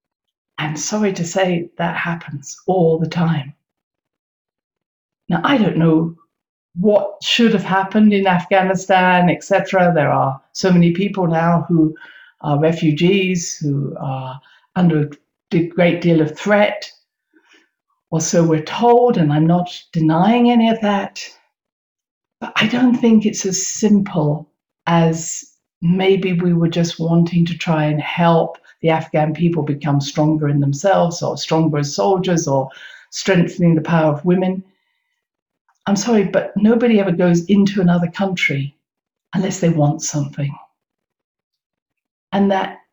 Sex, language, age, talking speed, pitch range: female, English, 60-79, 135 wpm, 160-205 Hz